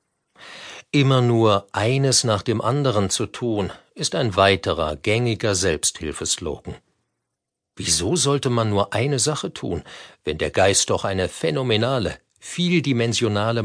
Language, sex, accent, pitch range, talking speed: German, male, German, 100-130 Hz, 120 wpm